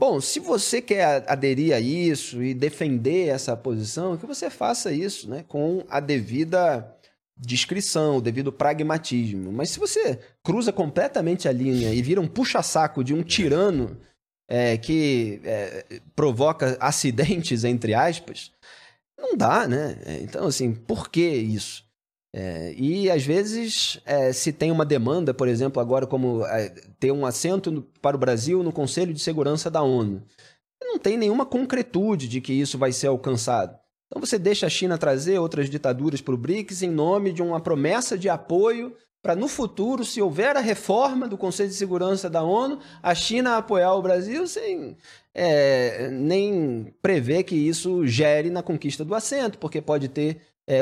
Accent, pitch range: Brazilian, 130-185 Hz